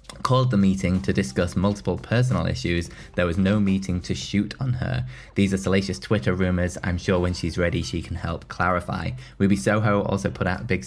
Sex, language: male, English